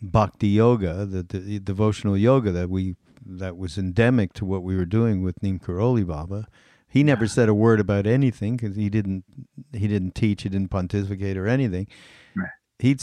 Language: English